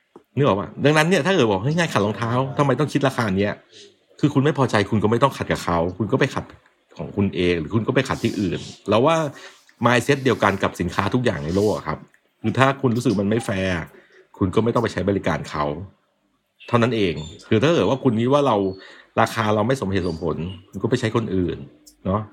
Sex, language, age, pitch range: male, Thai, 60-79, 100-135 Hz